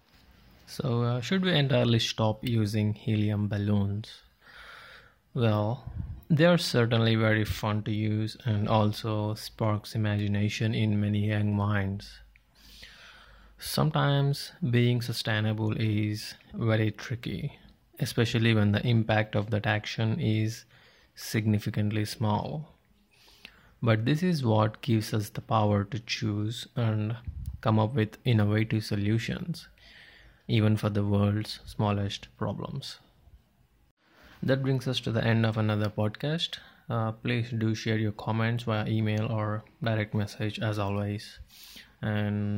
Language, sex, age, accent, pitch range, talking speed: English, male, 20-39, Indian, 105-120 Hz, 120 wpm